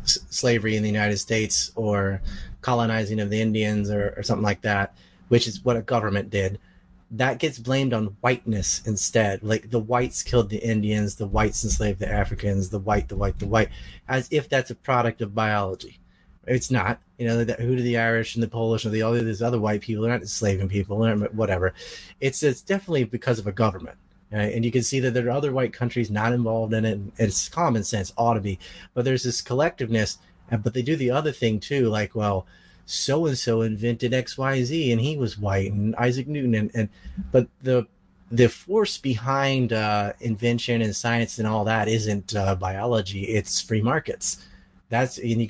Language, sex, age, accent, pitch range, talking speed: English, male, 30-49, American, 105-120 Hz, 200 wpm